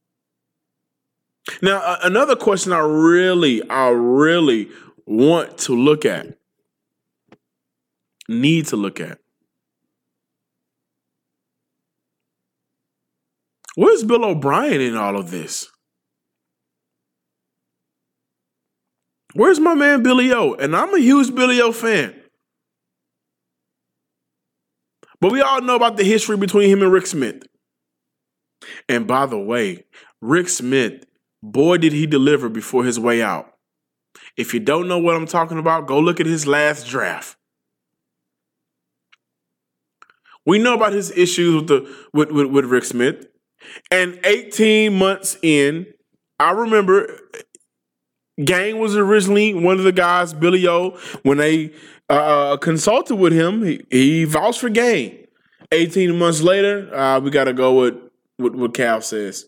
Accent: American